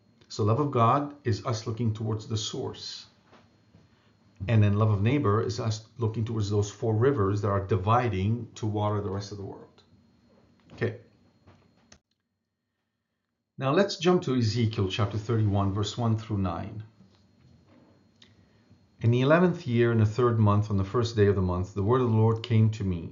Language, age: English, 50-69